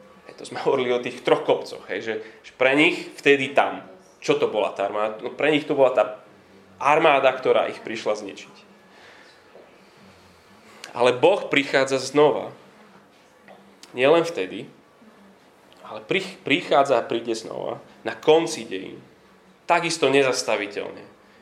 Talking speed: 130 wpm